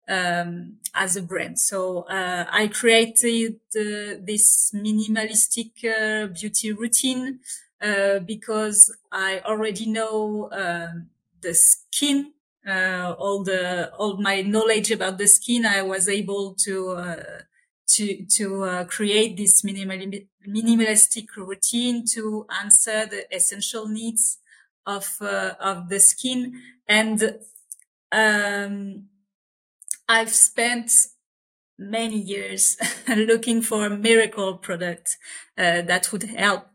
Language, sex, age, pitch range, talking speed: English, female, 30-49, 190-225 Hz, 115 wpm